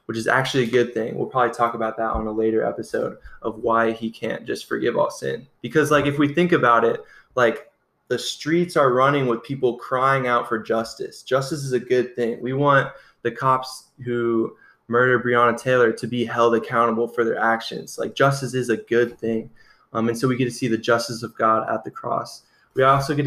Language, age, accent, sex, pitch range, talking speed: English, 20-39, American, male, 115-135 Hz, 215 wpm